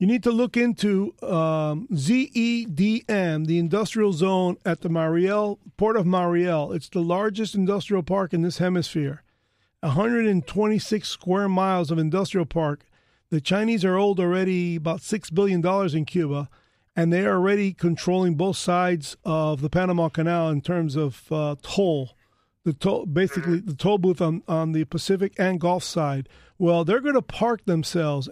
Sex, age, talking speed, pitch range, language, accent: male, 40-59, 160 wpm, 160-200 Hz, English, American